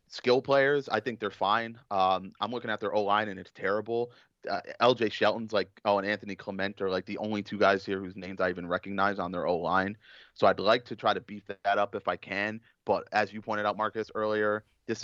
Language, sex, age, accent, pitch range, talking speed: English, male, 30-49, American, 95-115 Hz, 230 wpm